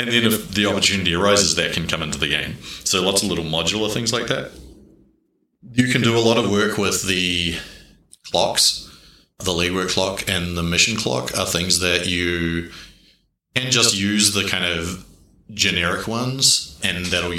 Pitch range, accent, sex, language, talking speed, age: 85-100 Hz, Australian, male, German, 175 wpm, 30-49